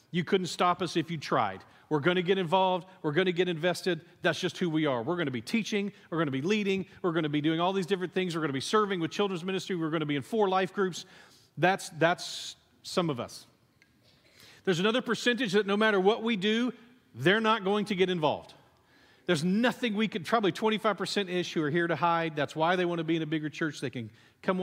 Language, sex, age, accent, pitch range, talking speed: English, male, 40-59, American, 140-185 Hz, 245 wpm